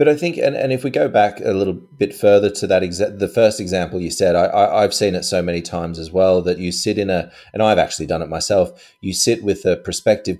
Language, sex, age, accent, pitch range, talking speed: English, male, 30-49, Australian, 90-105 Hz, 270 wpm